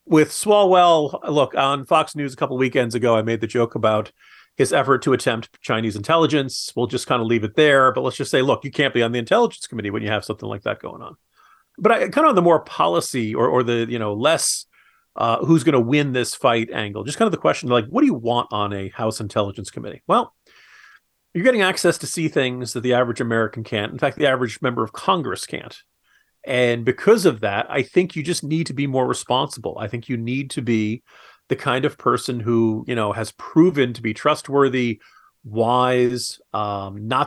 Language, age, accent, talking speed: English, 40-59, American, 220 wpm